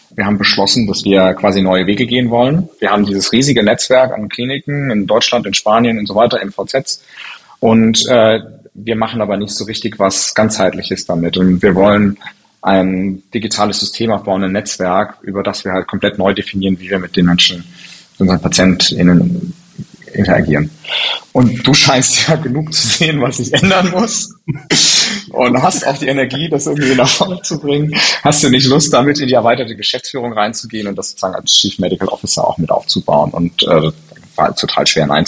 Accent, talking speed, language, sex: German, 185 wpm, German, male